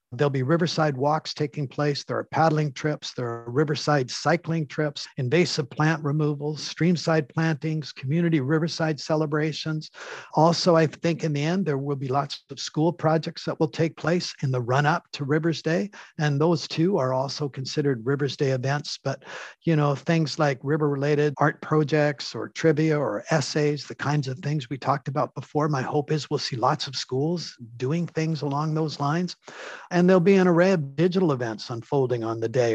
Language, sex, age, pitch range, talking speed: English, male, 50-69, 140-165 Hz, 190 wpm